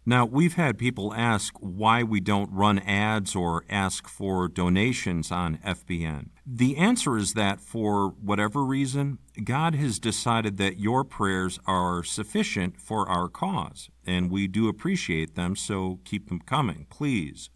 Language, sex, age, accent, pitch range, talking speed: English, male, 50-69, American, 95-125 Hz, 150 wpm